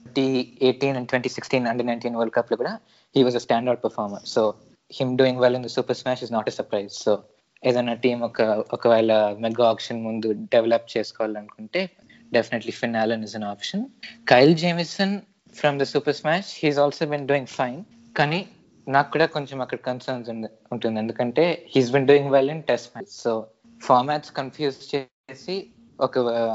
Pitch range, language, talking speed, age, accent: 115-140 Hz, Telugu, 175 wpm, 20-39, native